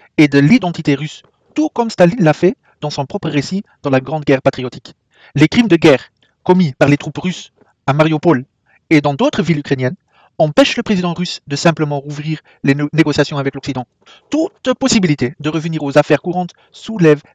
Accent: French